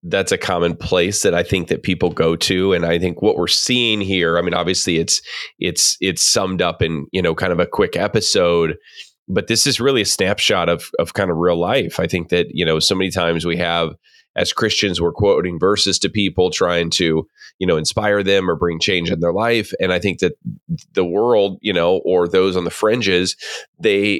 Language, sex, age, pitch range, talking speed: English, male, 30-49, 85-100 Hz, 220 wpm